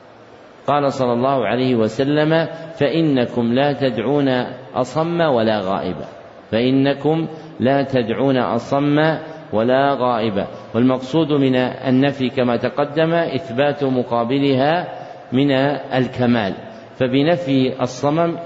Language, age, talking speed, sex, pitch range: Arabic, 50-69, 90 wpm, male, 125-155 Hz